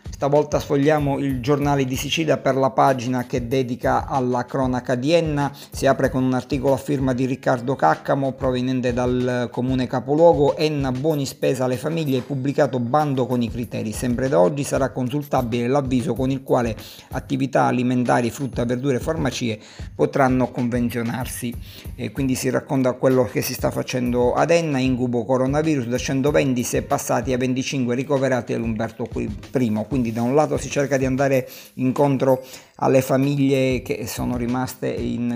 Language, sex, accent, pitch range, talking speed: Italian, male, native, 120-135 Hz, 155 wpm